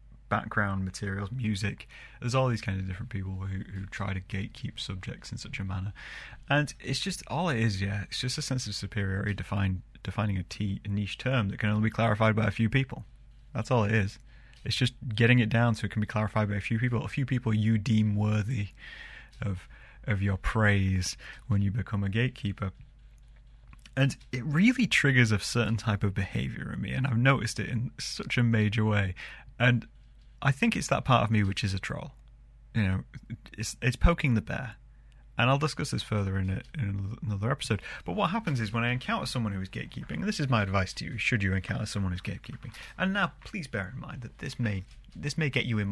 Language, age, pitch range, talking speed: English, 20-39, 100-125 Hz, 220 wpm